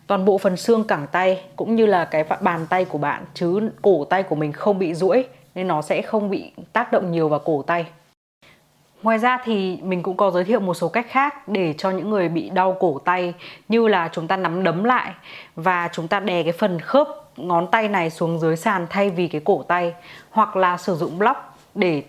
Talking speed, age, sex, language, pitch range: 230 wpm, 20-39, female, Vietnamese, 170-210 Hz